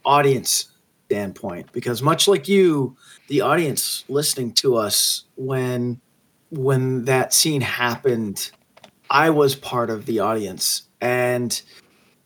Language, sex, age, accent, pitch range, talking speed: English, male, 30-49, American, 125-160 Hz, 115 wpm